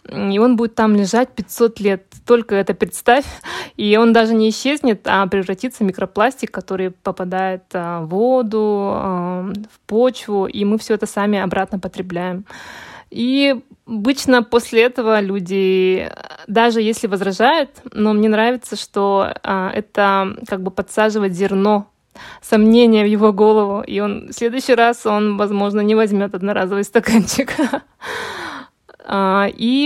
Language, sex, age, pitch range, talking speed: Russian, female, 20-39, 195-235 Hz, 130 wpm